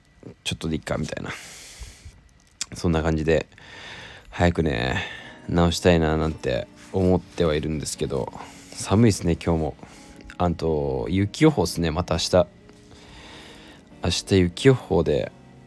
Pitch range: 80-90 Hz